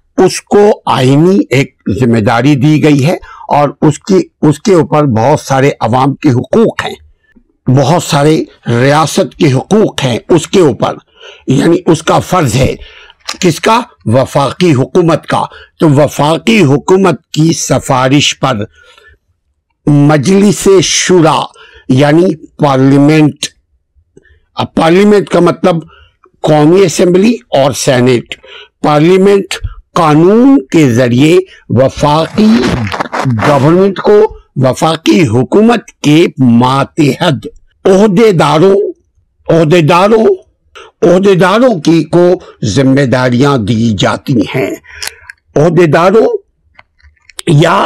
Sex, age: male, 60-79